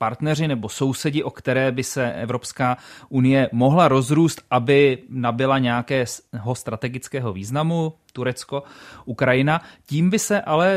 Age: 30-49